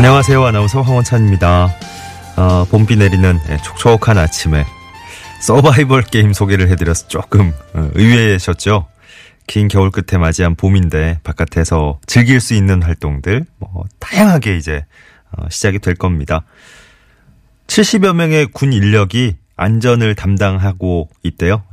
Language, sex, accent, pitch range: Korean, male, native, 85-120 Hz